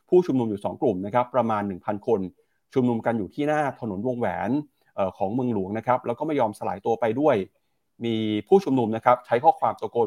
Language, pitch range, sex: Thai, 110-140 Hz, male